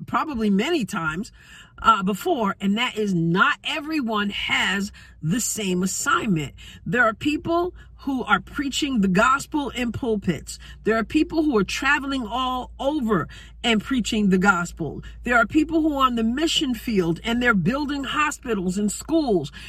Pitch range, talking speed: 210-300 Hz, 155 wpm